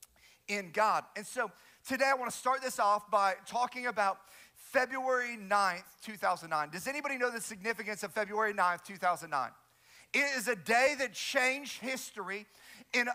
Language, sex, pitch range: English, male, 225-260 Hz